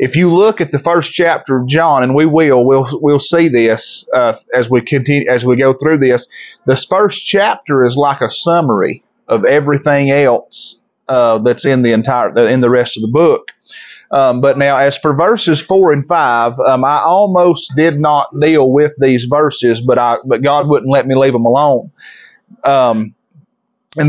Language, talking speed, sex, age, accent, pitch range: English, 190 wpm, male, 30-49, American, 135-165 Hz